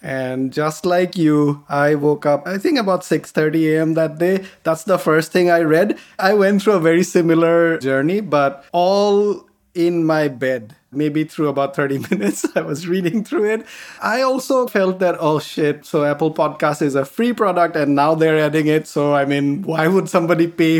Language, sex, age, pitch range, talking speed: English, male, 20-39, 145-180 Hz, 195 wpm